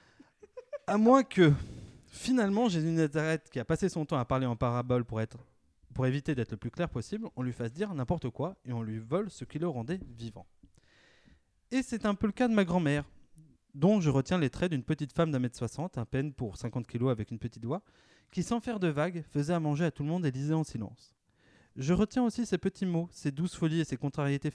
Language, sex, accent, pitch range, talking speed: French, male, French, 125-170 Hz, 235 wpm